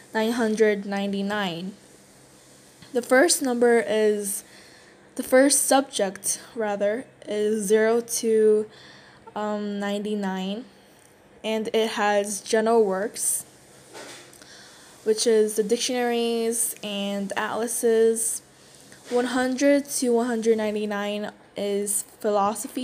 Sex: female